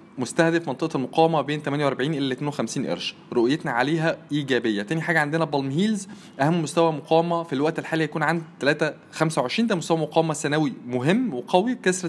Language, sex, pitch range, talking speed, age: Arabic, male, 145-170 Hz, 165 wpm, 20-39